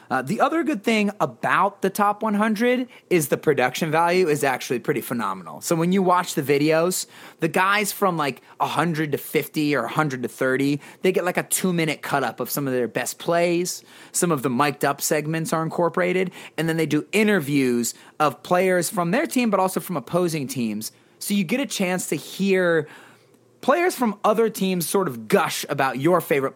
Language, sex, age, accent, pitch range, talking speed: English, male, 30-49, American, 135-190 Hz, 190 wpm